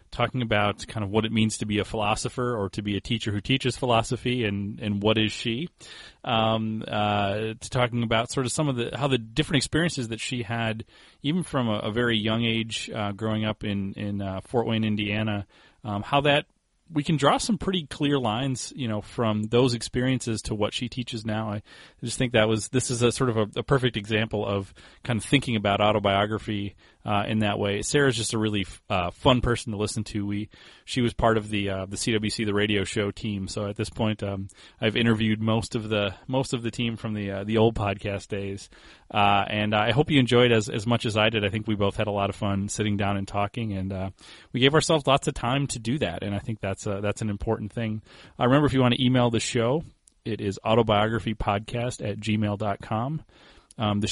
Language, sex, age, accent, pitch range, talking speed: English, male, 30-49, American, 105-120 Hz, 235 wpm